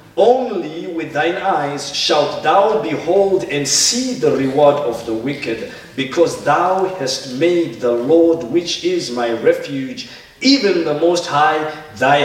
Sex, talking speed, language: male, 140 wpm, English